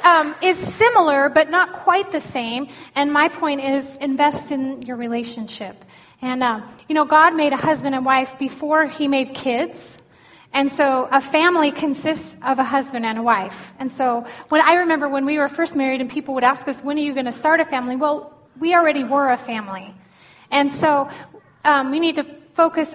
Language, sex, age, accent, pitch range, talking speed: English, female, 10-29, American, 250-300 Hz, 200 wpm